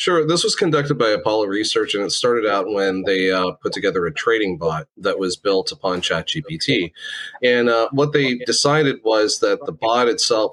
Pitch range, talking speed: 95-135 Hz, 195 wpm